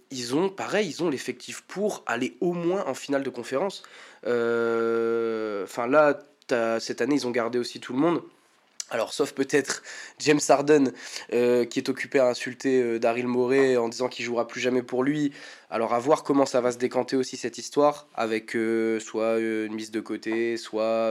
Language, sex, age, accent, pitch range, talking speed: French, male, 20-39, French, 115-140 Hz, 195 wpm